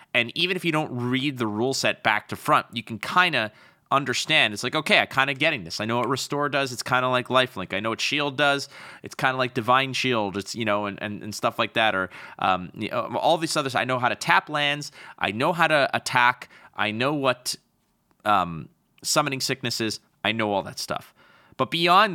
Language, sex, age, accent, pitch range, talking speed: English, male, 30-49, American, 110-140 Hz, 230 wpm